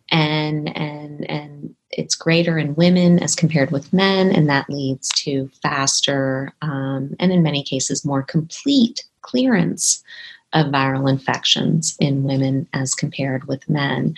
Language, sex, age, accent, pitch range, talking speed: English, female, 30-49, American, 135-165 Hz, 140 wpm